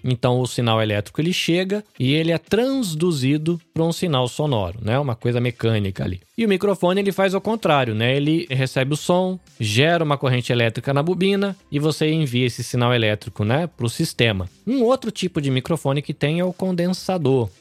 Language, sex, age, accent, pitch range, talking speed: Portuguese, male, 20-39, Brazilian, 120-165 Hz, 195 wpm